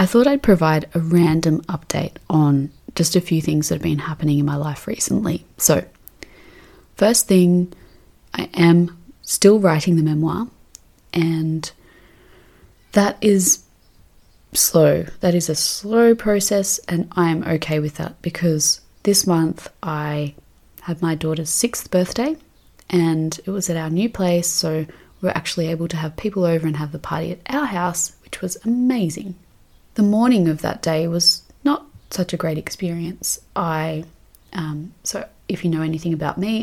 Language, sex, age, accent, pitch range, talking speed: English, female, 20-39, Australian, 160-190 Hz, 160 wpm